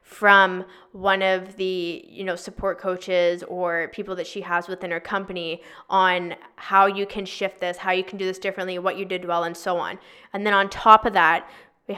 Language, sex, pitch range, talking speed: English, female, 180-210 Hz, 210 wpm